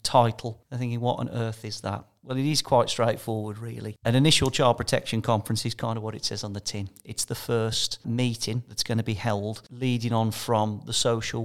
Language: English